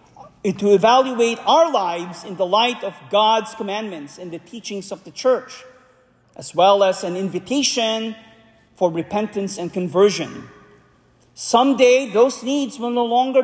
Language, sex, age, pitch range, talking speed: English, male, 40-59, 200-255 Hz, 140 wpm